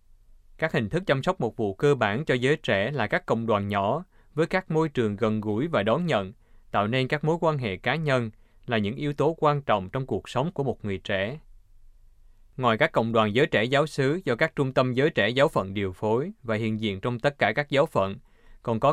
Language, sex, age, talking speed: Vietnamese, male, 20-39, 240 wpm